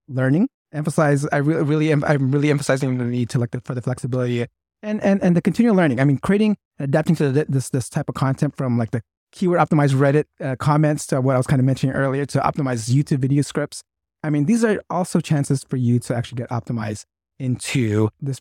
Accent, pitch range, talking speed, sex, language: American, 125-155 Hz, 225 wpm, male, English